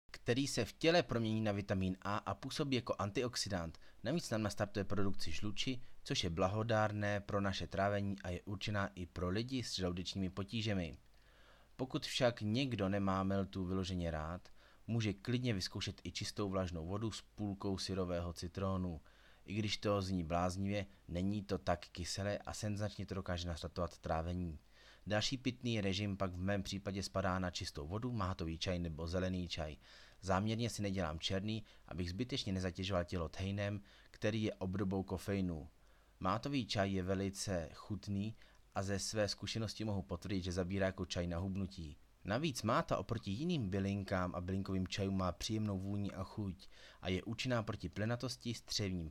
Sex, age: male, 30-49